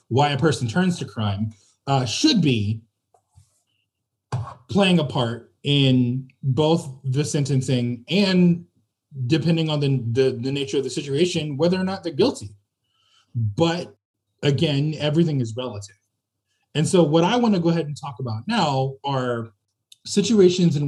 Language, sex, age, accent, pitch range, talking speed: English, male, 20-39, American, 110-160 Hz, 145 wpm